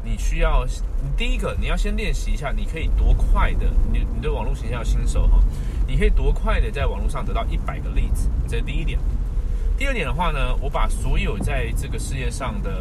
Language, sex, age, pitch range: Chinese, male, 20-39, 70-100 Hz